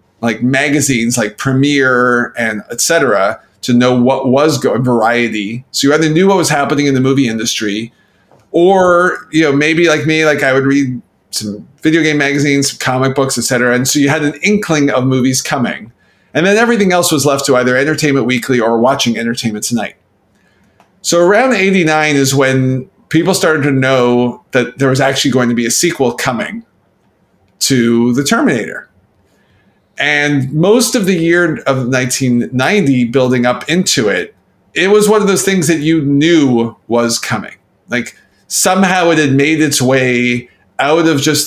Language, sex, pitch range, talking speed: English, male, 125-160 Hz, 170 wpm